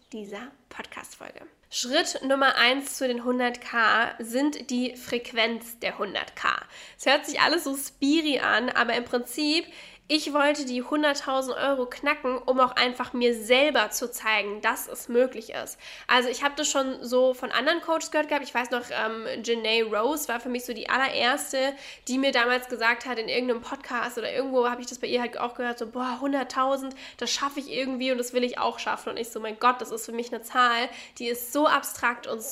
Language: German